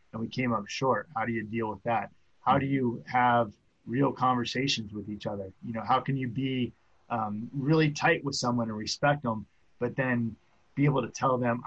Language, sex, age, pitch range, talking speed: English, male, 30-49, 115-140 Hz, 210 wpm